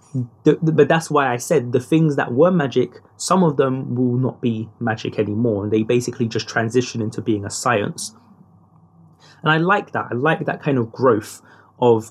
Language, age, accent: English, 20-39, British